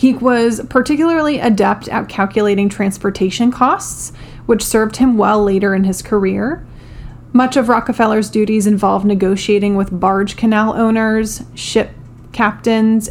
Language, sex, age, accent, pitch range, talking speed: English, female, 30-49, American, 195-230 Hz, 130 wpm